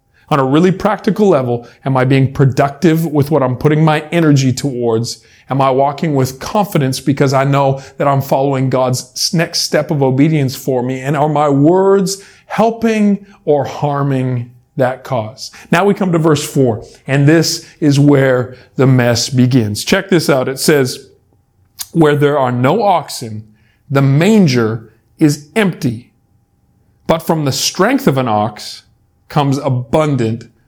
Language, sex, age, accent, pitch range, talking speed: English, male, 40-59, American, 125-160 Hz, 155 wpm